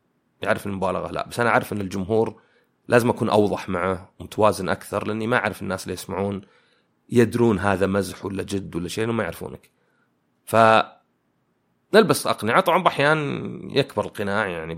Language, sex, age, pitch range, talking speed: Arabic, male, 30-49, 95-115 Hz, 155 wpm